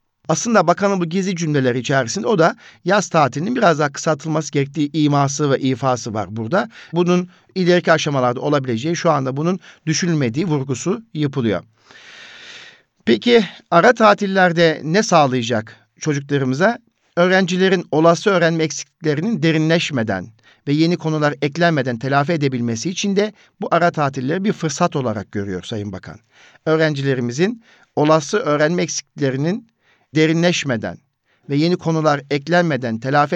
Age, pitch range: 50-69, 135-170 Hz